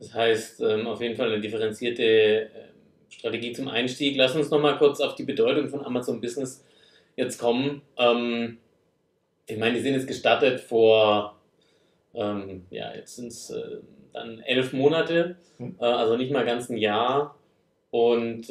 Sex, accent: male, German